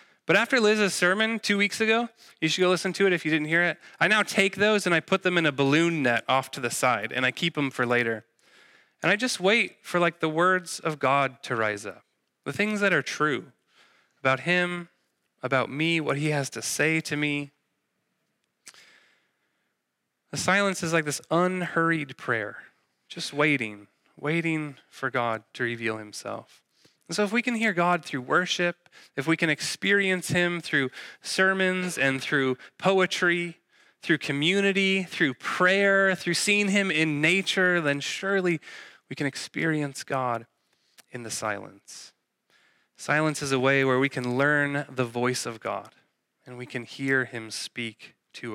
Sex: male